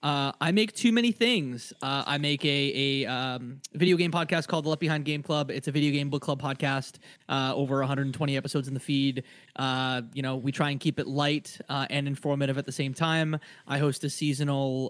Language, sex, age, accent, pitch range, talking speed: English, male, 20-39, American, 135-160 Hz, 220 wpm